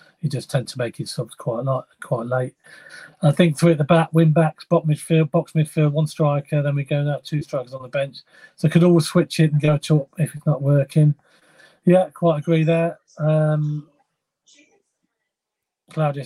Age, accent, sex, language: 40-59, British, male, English